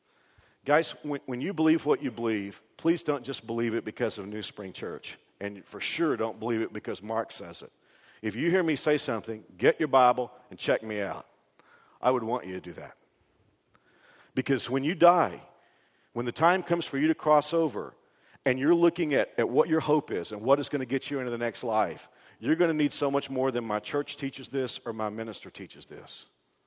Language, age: English, 50-69